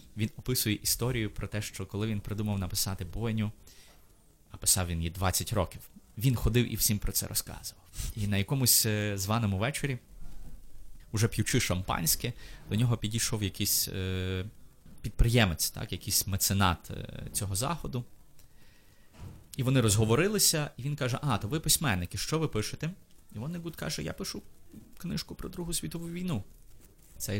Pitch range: 95-120 Hz